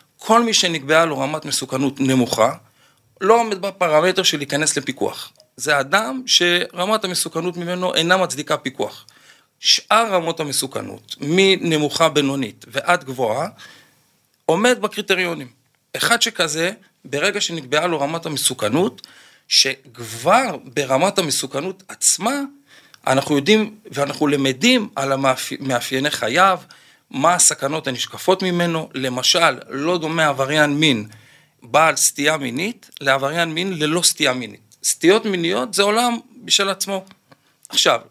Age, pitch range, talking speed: 40-59, 140-190 Hz, 115 wpm